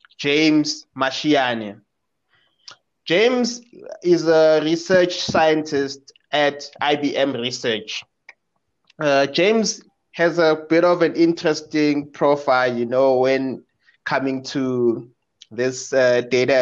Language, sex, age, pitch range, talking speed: English, male, 20-39, 125-150 Hz, 100 wpm